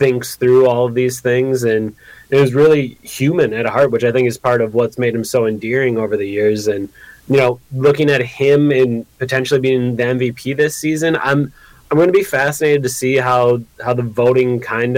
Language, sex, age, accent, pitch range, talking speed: English, male, 20-39, American, 120-135 Hz, 210 wpm